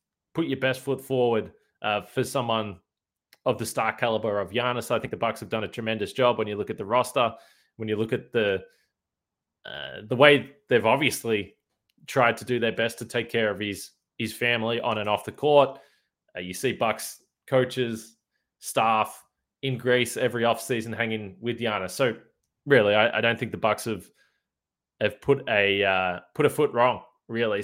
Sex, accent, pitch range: male, Australian, 110-135 Hz